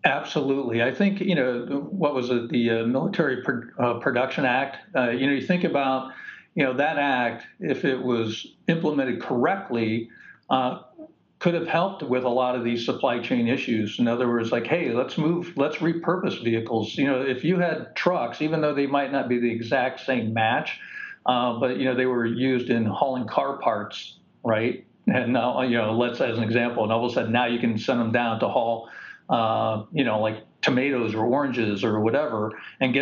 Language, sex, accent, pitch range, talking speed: English, male, American, 115-150 Hz, 200 wpm